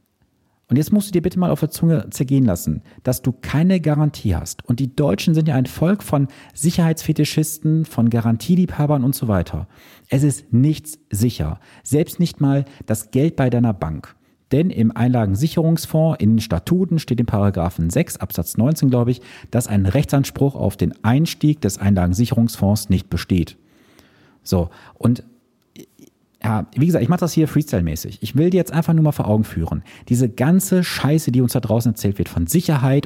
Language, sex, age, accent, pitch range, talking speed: German, male, 40-59, German, 100-145 Hz, 175 wpm